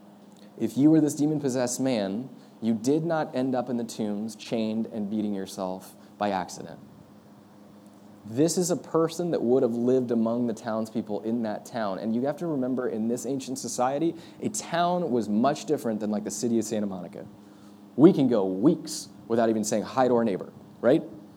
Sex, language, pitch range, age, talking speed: male, English, 105-140 Hz, 20-39, 190 wpm